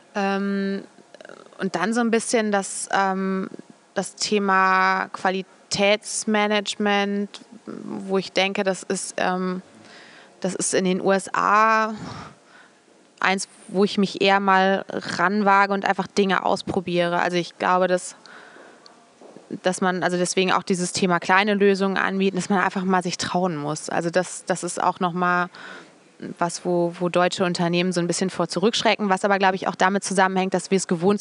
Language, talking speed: English, 150 wpm